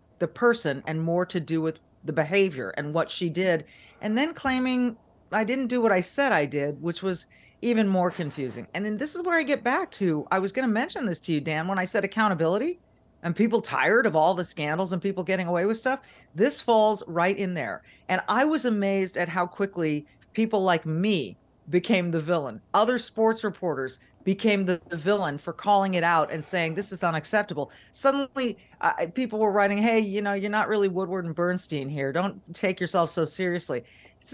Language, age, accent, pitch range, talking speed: English, 40-59, American, 170-215 Hz, 205 wpm